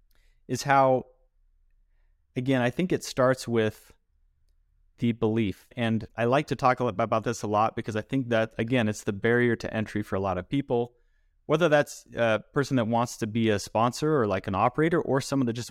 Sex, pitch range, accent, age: male, 105-125 Hz, American, 30-49